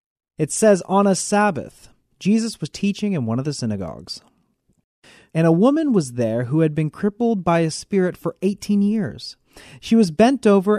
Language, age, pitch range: English, 30-49, 130-195 Hz